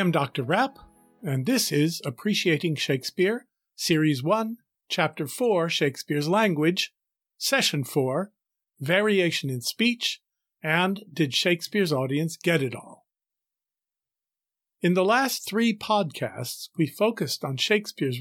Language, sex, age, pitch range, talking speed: English, male, 50-69, 145-200 Hz, 115 wpm